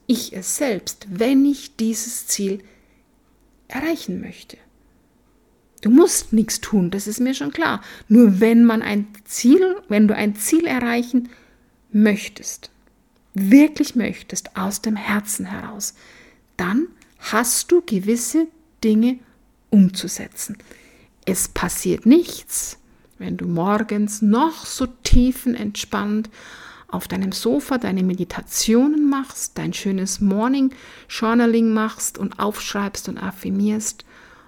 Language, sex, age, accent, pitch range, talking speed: German, female, 50-69, German, 200-250 Hz, 115 wpm